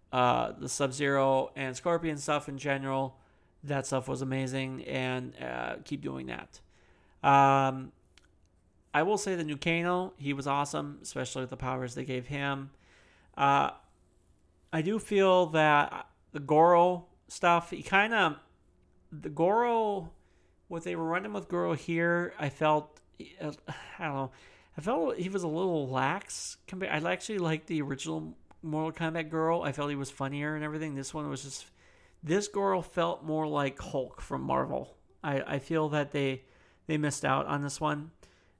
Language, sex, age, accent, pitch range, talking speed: English, male, 40-59, American, 130-155 Hz, 165 wpm